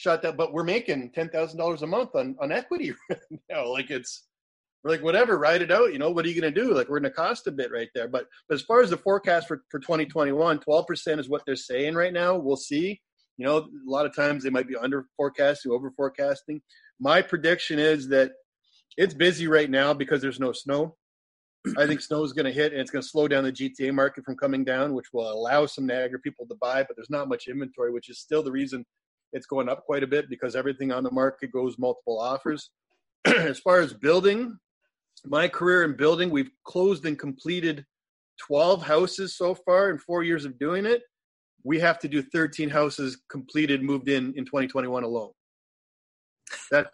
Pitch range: 135-170 Hz